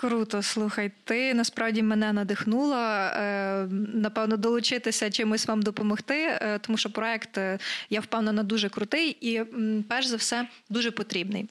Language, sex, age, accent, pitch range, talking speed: Ukrainian, female, 20-39, native, 215-245 Hz, 125 wpm